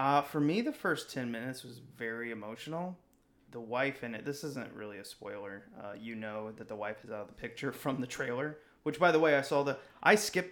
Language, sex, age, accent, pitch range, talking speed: English, male, 20-39, American, 115-140 Hz, 240 wpm